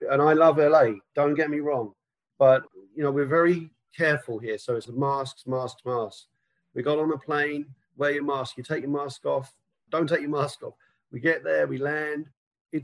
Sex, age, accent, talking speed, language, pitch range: male, 40-59, British, 210 wpm, English, 130-160 Hz